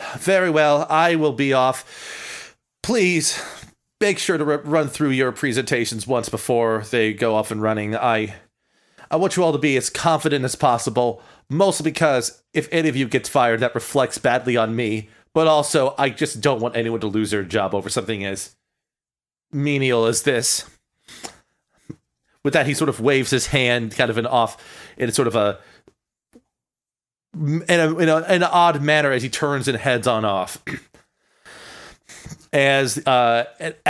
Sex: male